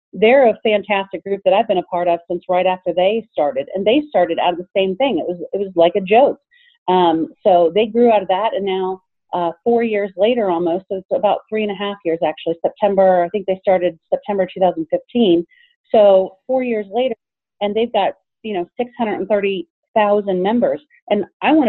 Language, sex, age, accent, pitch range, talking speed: English, female, 40-59, American, 180-230 Hz, 205 wpm